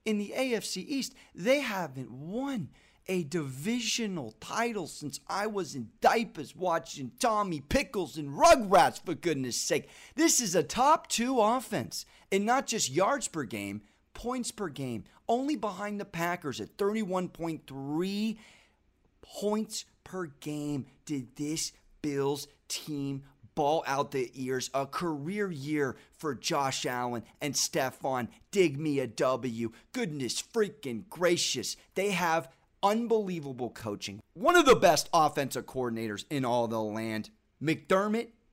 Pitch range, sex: 135-195 Hz, male